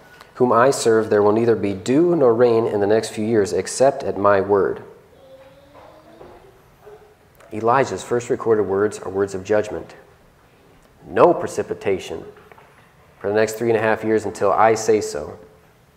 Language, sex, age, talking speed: English, male, 40-59, 155 wpm